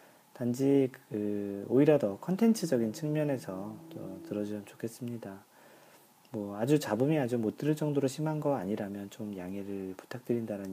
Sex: male